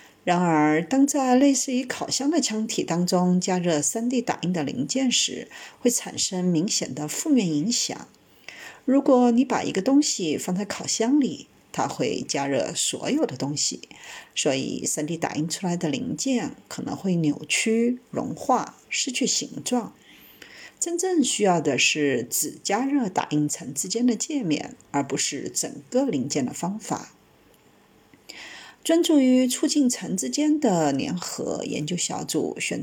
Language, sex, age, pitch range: Chinese, female, 50-69, 170-260 Hz